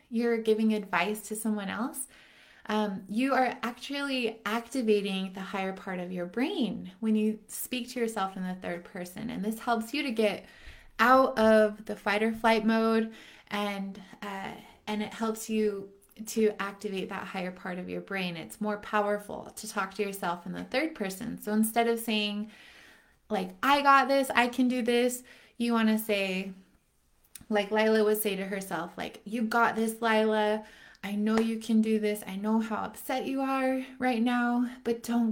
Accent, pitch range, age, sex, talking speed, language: American, 200-230 Hz, 20-39, female, 180 wpm, English